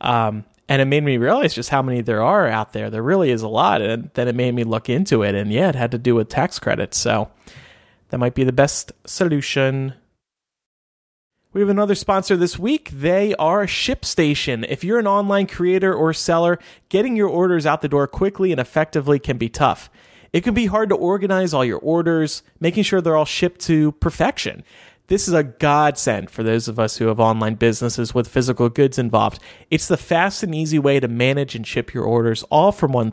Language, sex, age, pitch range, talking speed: English, male, 30-49, 120-180 Hz, 215 wpm